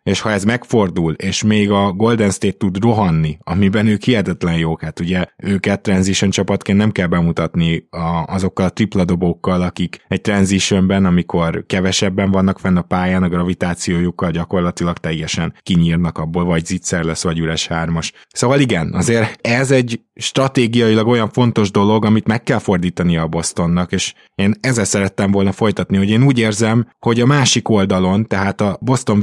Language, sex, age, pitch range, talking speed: Hungarian, male, 20-39, 90-110 Hz, 165 wpm